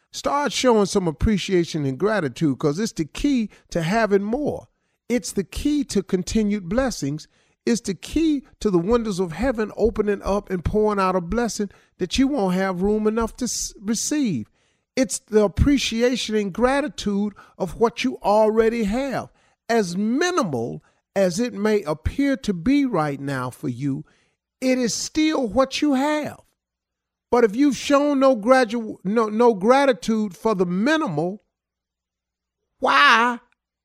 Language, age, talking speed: English, 50-69, 145 wpm